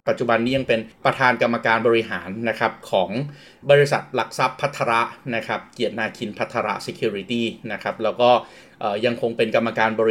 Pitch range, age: 115-135 Hz, 30-49